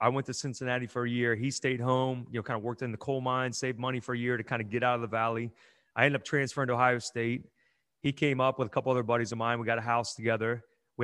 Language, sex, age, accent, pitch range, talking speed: English, male, 30-49, American, 115-135 Hz, 300 wpm